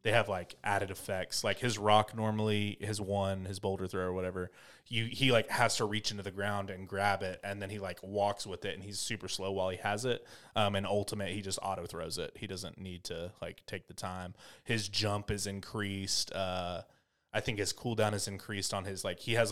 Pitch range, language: 90-105 Hz, English